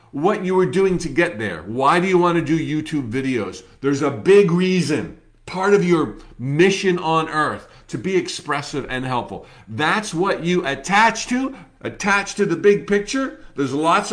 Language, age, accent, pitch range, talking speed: English, 50-69, American, 140-190 Hz, 180 wpm